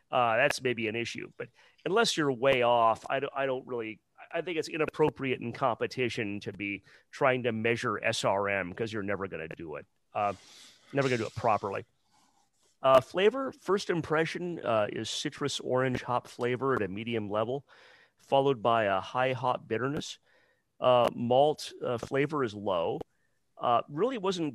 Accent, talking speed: American, 170 wpm